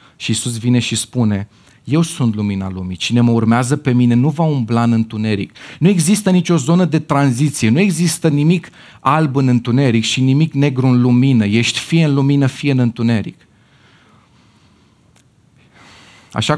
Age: 30-49